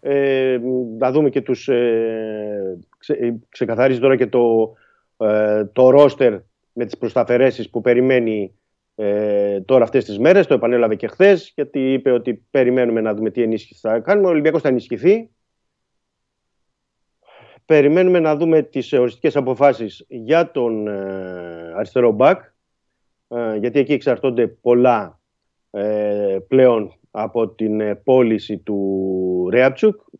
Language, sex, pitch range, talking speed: Greek, male, 105-135 Hz, 130 wpm